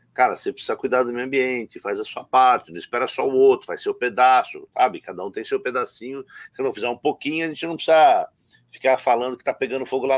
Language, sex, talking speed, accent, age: Portuguese, male, 240 wpm, Brazilian, 50-69